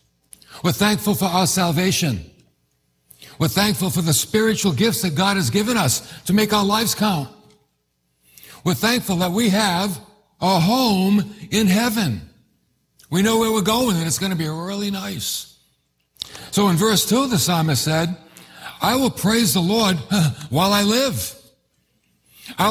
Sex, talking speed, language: male, 155 wpm, English